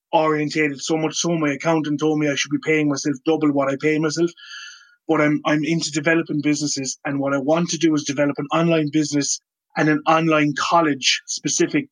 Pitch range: 145-165 Hz